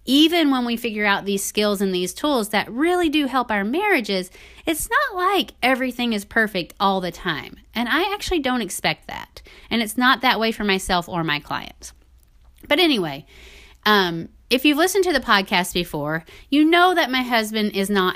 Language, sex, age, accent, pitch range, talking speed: English, female, 30-49, American, 185-265 Hz, 190 wpm